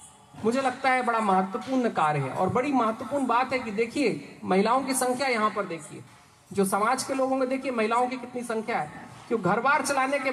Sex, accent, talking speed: male, native, 210 wpm